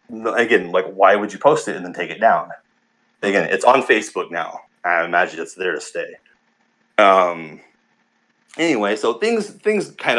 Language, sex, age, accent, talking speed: English, male, 30-49, American, 175 wpm